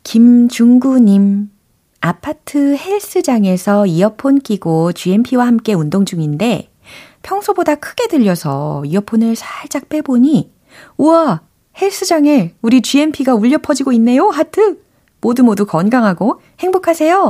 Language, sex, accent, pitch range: Korean, female, native, 160-255 Hz